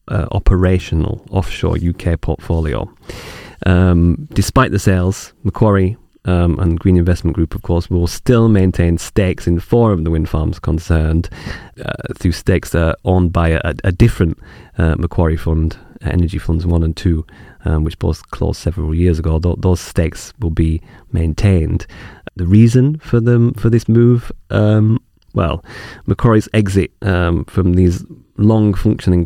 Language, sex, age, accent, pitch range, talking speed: English, male, 30-49, British, 85-100 Hz, 155 wpm